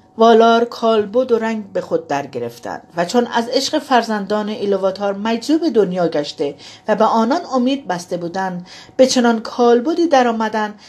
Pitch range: 195-260 Hz